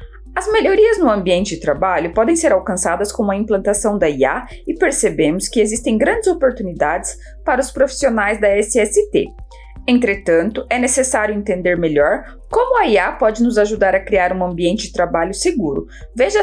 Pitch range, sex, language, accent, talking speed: 185-285 Hz, female, Portuguese, Brazilian, 160 wpm